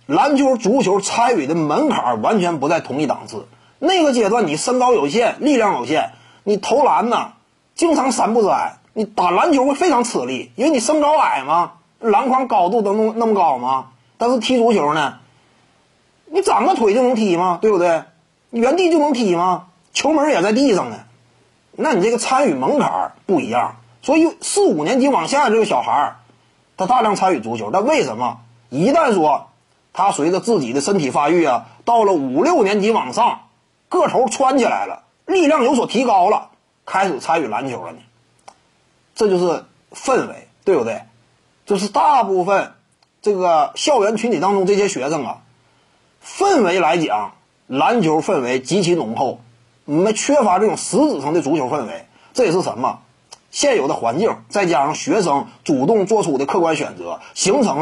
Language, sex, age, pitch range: Chinese, male, 30-49, 180-285 Hz